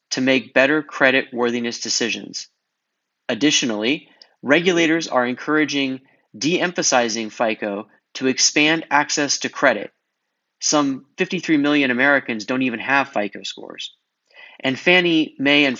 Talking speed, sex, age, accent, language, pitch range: 115 wpm, male, 30-49, American, English, 125-155 Hz